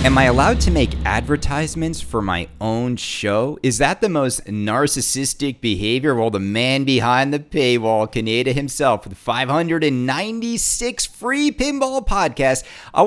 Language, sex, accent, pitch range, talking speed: English, male, American, 110-150 Hz, 140 wpm